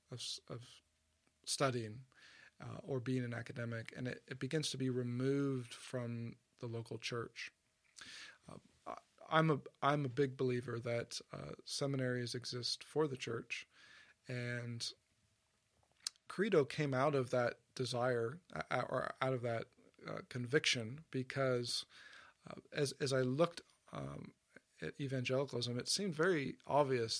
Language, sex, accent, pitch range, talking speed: English, male, American, 120-140 Hz, 130 wpm